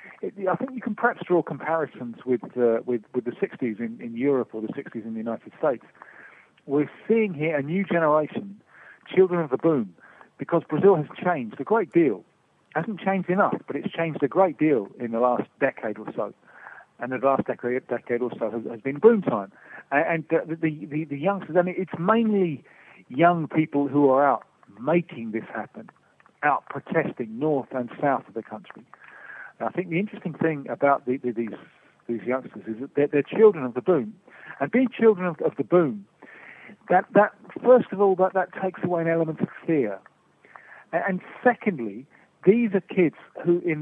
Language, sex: English, male